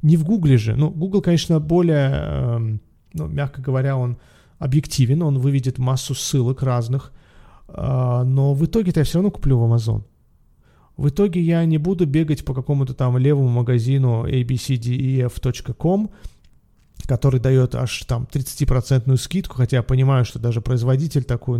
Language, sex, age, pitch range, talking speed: Russian, male, 30-49, 120-150 Hz, 145 wpm